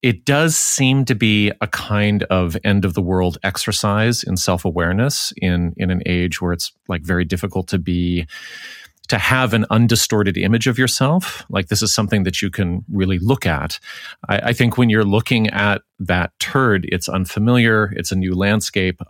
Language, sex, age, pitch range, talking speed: English, male, 30-49, 95-120 Hz, 200 wpm